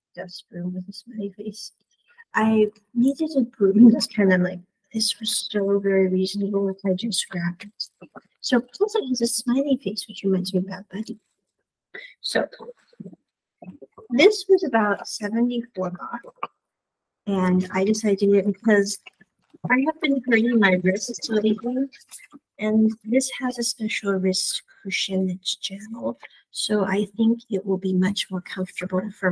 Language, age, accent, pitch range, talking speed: English, 50-69, American, 190-235 Hz, 155 wpm